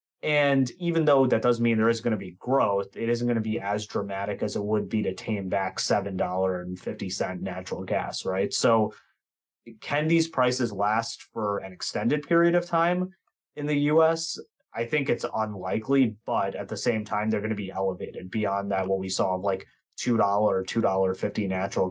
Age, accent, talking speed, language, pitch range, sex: 30-49, American, 185 wpm, English, 100-125 Hz, male